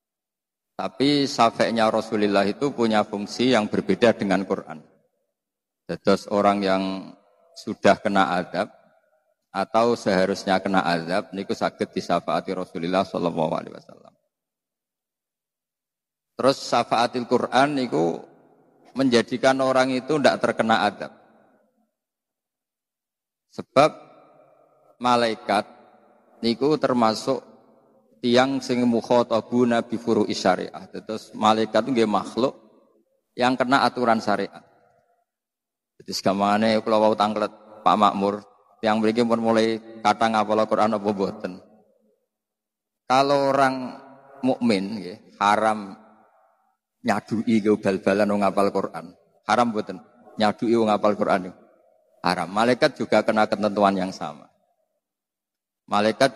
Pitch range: 100-120 Hz